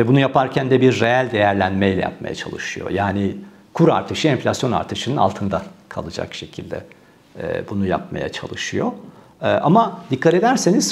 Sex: male